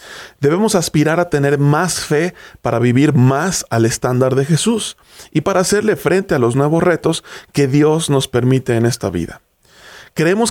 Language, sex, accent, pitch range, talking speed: Spanish, male, Mexican, 130-175 Hz, 165 wpm